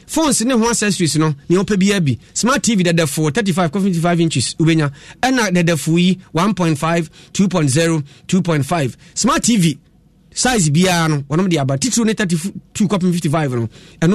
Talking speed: 155 wpm